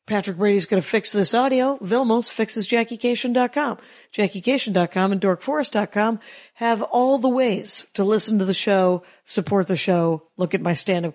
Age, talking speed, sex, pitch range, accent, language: 50-69, 155 wpm, female, 185-235 Hz, American, English